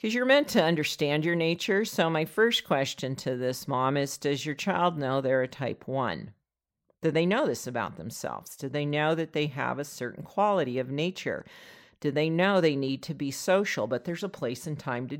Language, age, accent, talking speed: English, 50-69, American, 215 wpm